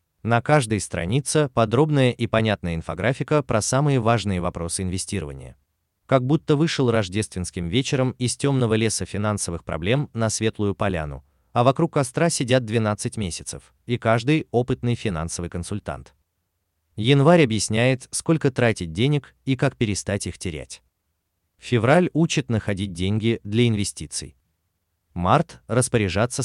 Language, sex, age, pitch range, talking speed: Russian, male, 30-49, 85-130 Hz, 120 wpm